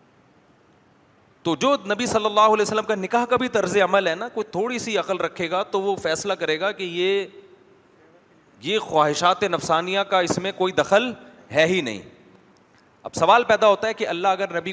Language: Urdu